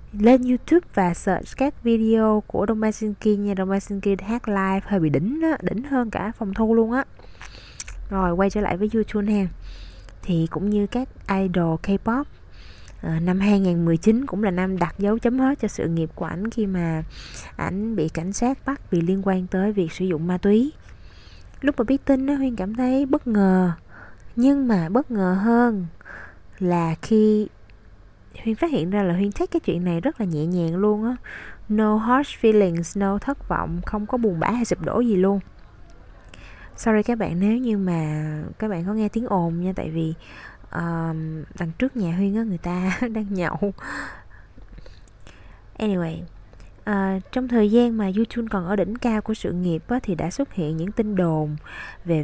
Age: 20-39